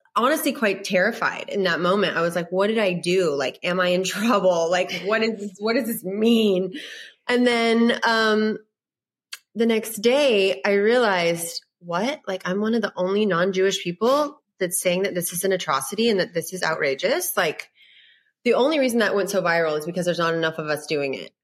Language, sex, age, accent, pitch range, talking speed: English, female, 30-49, American, 170-225 Hz, 200 wpm